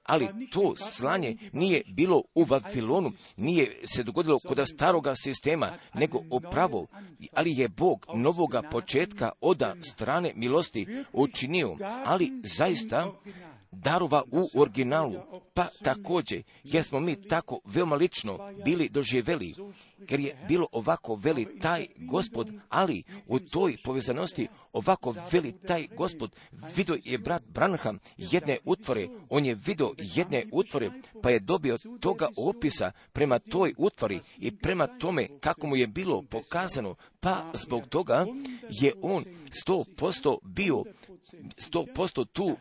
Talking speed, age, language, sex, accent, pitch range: 125 wpm, 50-69, Croatian, male, native, 140-195 Hz